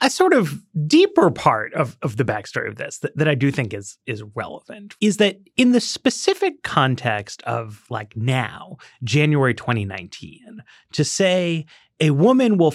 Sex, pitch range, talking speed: male, 125-180 Hz, 160 wpm